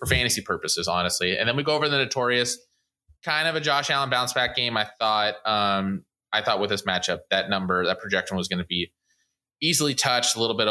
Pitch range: 100-120 Hz